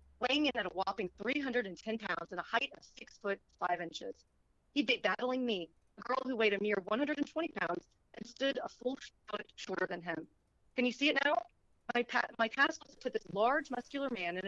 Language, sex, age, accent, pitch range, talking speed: English, female, 40-59, American, 185-255 Hz, 215 wpm